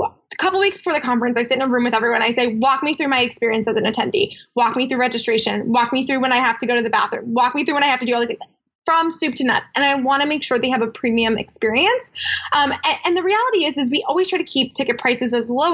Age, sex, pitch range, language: 20-39, female, 240-315 Hz, English